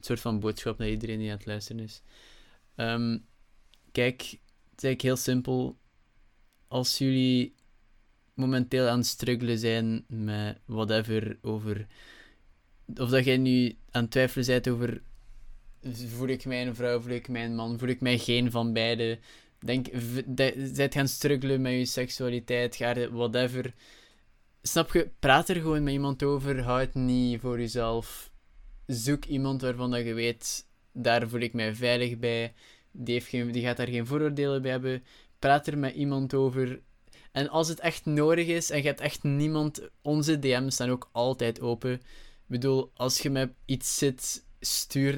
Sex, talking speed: male, 165 wpm